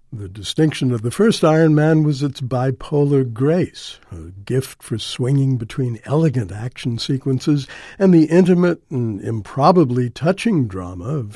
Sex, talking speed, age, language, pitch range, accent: male, 145 wpm, 60-79, English, 120-150 Hz, American